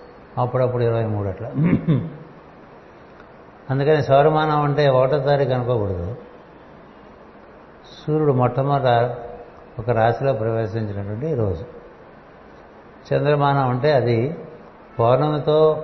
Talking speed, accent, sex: 75 wpm, native, male